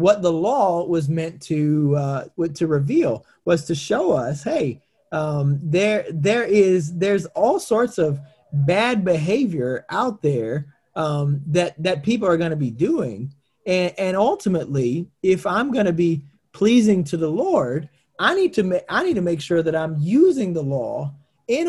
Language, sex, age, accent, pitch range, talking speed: English, male, 30-49, American, 150-205 Hz, 170 wpm